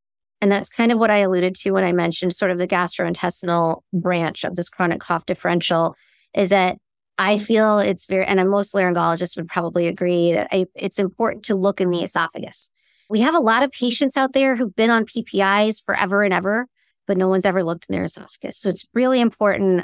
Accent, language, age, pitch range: American, English, 30-49, 185-210 Hz